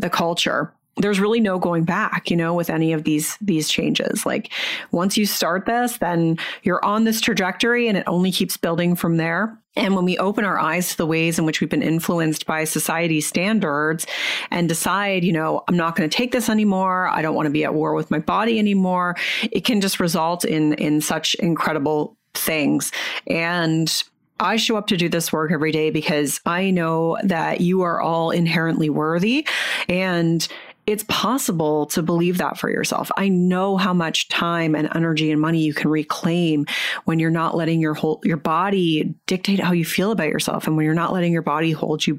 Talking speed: 205 wpm